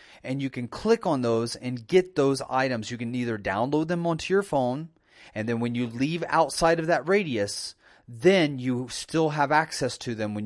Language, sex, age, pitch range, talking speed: English, male, 30-49, 120-160 Hz, 200 wpm